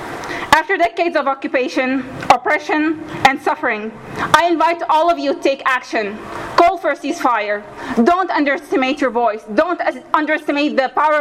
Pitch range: 260-345 Hz